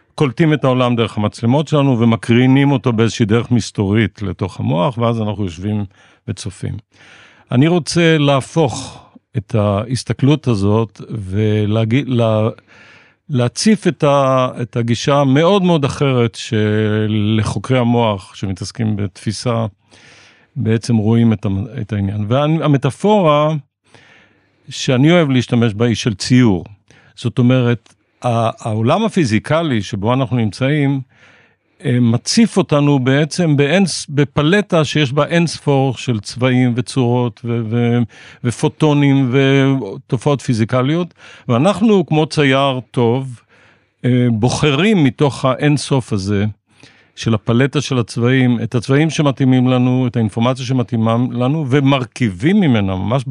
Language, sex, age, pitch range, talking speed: Hebrew, male, 50-69, 115-145 Hz, 110 wpm